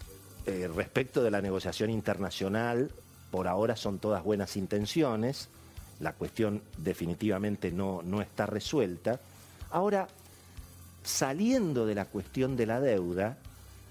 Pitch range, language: 95-130 Hz, Spanish